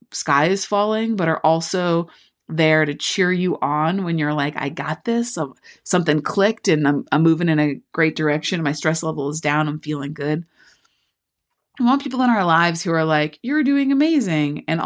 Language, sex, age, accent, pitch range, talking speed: English, female, 30-49, American, 160-215 Hz, 195 wpm